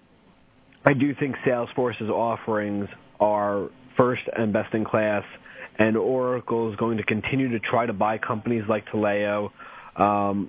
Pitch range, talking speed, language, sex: 100-115 Hz, 145 wpm, English, male